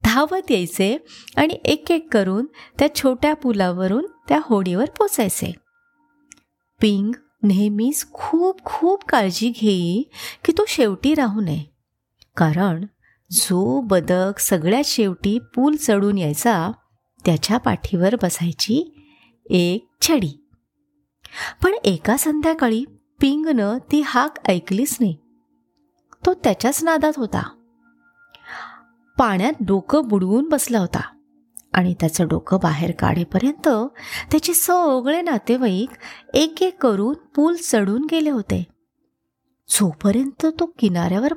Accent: native